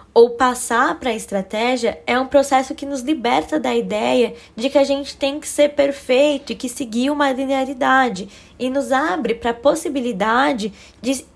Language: Portuguese